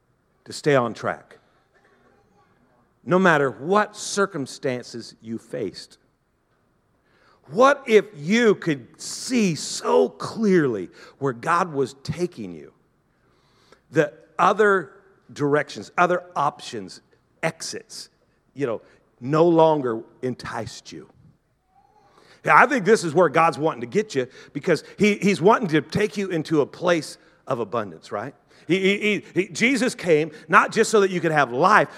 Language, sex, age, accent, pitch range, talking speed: English, male, 50-69, American, 160-215 Hz, 135 wpm